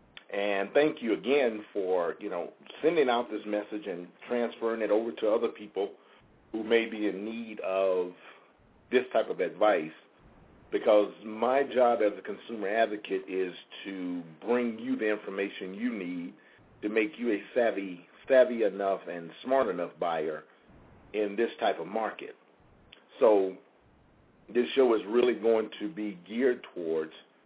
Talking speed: 150 wpm